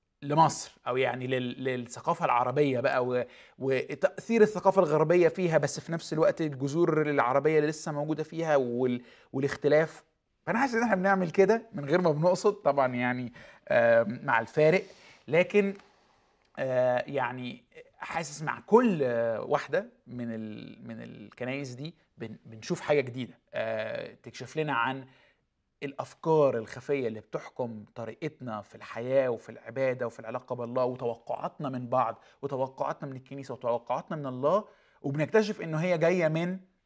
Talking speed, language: 135 wpm, Arabic